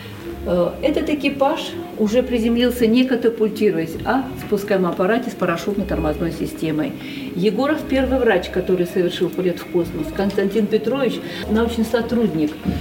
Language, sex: Russian, female